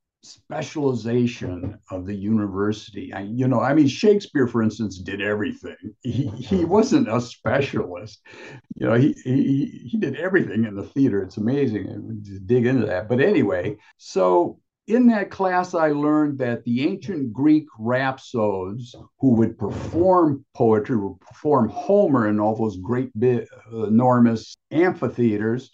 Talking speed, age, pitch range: 140 wpm, 60-79, 110-150 Hz